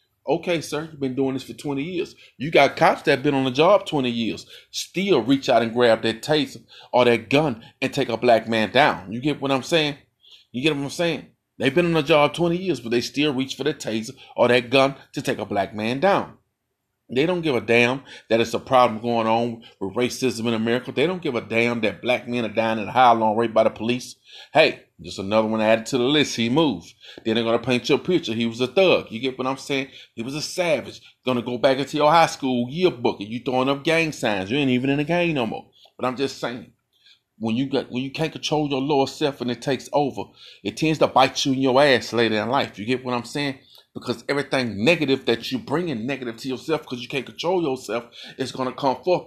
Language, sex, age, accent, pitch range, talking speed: English, male, 30-49, American, 115-140 Hz, 250 wpm